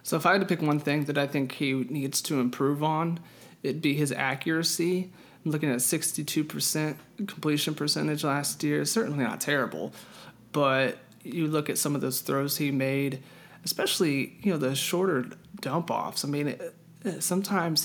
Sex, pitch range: male, 135-155 Hz